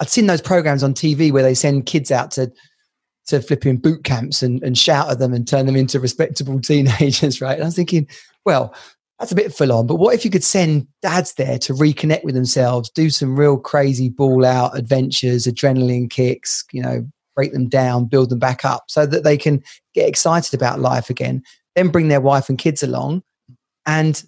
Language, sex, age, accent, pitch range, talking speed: English, male, 30-49, British, 130-155 Hz, 210 wpm